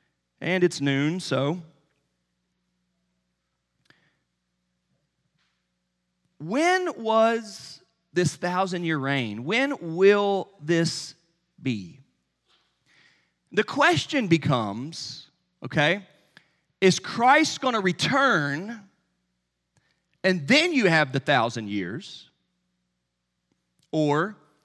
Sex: male